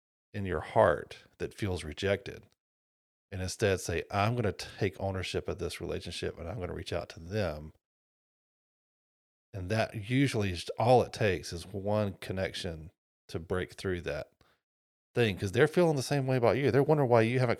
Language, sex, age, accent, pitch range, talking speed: English, male, 40-59, American, 90-115 Hz, 180 wpm